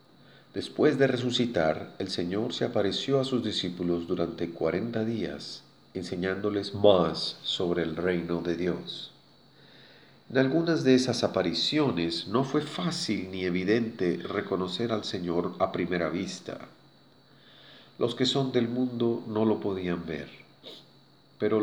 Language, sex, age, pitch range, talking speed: Spanish, male, 40-59, 90-115 Hz, 130 wpm